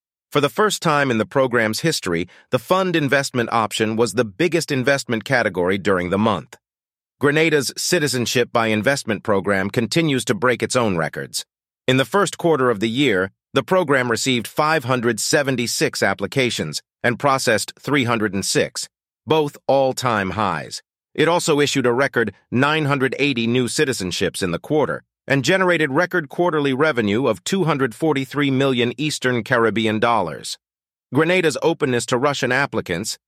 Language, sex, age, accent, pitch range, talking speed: English, male, 40-59, American, 110-150 Hz, 135 wpm